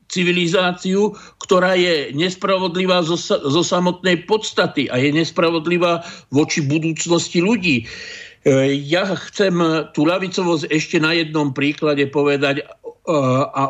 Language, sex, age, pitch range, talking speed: Slovak, male, 50-69, 145-185 Hz, 100 wpm